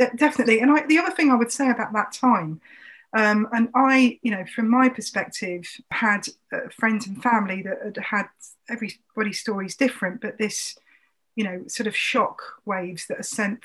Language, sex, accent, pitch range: English, female, British, 200-235 Hz